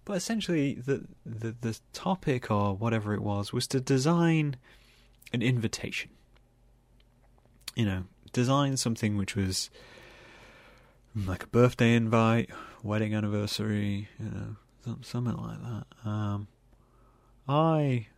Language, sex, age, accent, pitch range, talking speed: English, male, 30-49, British, 105-125 Hz, 110 wpm